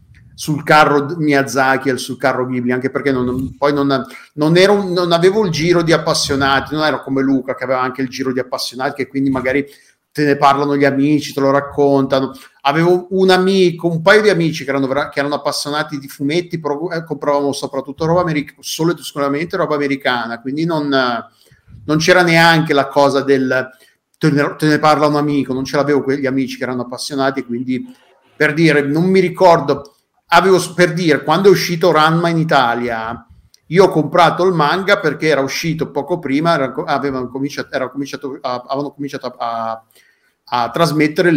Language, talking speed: Italian, 175 wpm